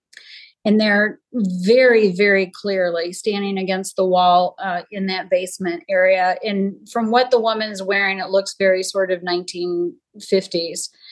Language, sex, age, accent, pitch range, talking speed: English, female, 30-49, American, 180-215 Hz, 145 wpm